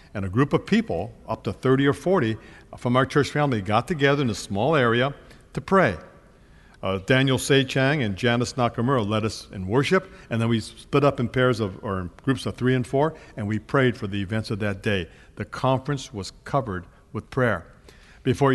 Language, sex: English, male